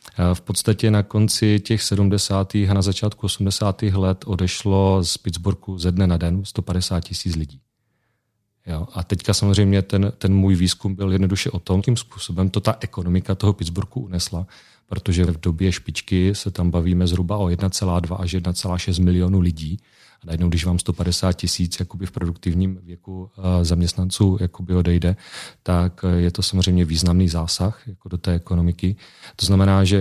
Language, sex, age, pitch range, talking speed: Czech, male, 40-59, 90-100 Hz, 160 wpm